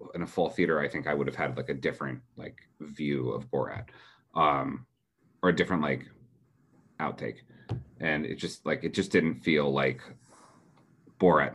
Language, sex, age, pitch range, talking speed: English, male, 30-49, 90-140 Hz, 170 wpm